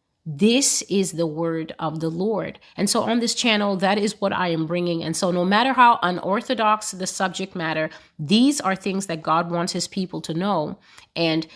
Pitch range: 165-210 Hz